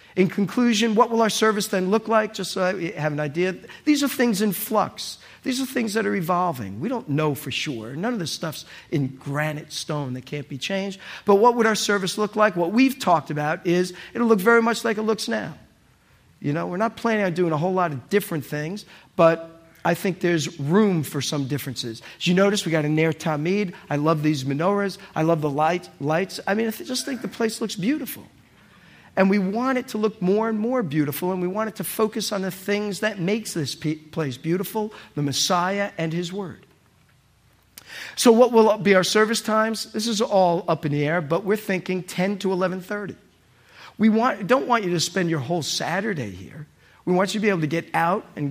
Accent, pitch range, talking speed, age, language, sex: American, 165-220 Hz, 220 wpm, 50-69, English, male